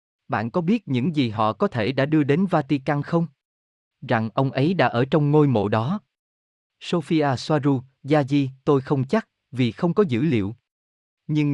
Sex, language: male, Vietnamese